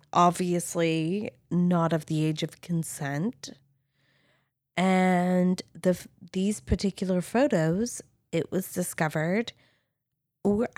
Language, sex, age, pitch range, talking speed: English, female, 20-39, 160-210 Hz, 90 wpm